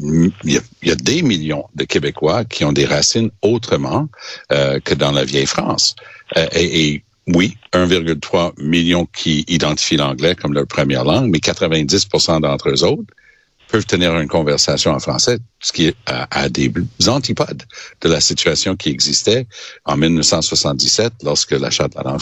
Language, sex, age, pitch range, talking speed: French, male, 60-79, 75-95 Hz, 175 wpm